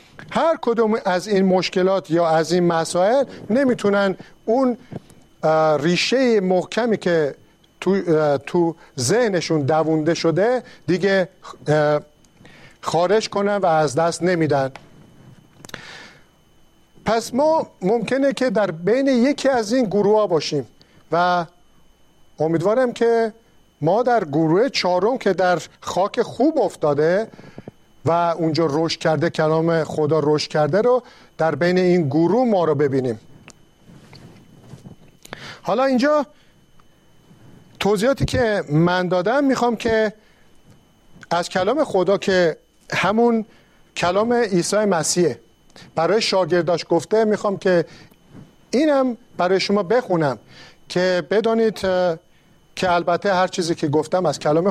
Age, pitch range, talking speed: 50-69, 165-220 Hz, 110 wpm